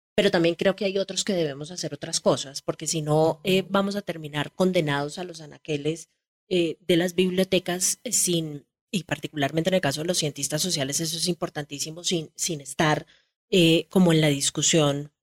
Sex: female